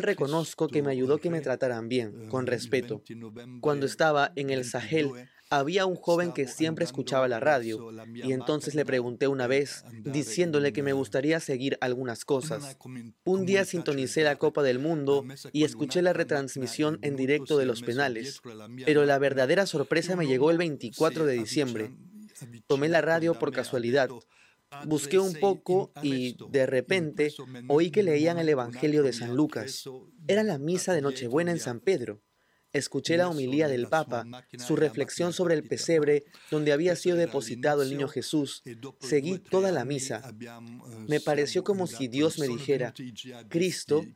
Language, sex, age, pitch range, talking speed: Spanish, male, 20-39, 125-160 Hz, 160 wpm